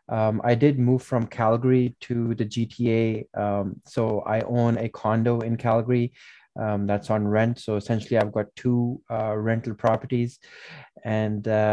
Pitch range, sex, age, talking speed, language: 110-120 Hz, male, 20-39, 155 wpm, English